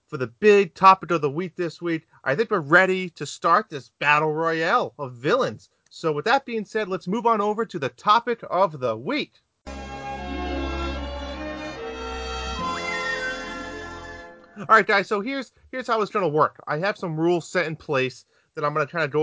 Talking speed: 185 wpm